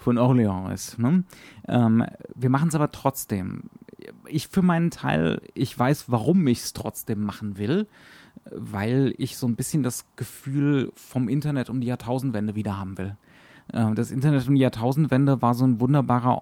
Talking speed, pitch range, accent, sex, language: 170 wpm, 110-135 Hz, German, male, German